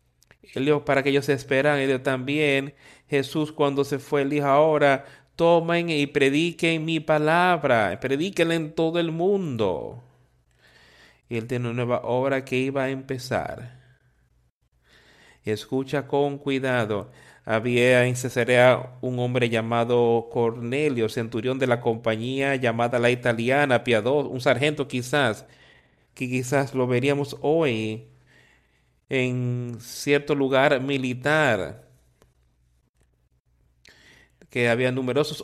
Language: Spanish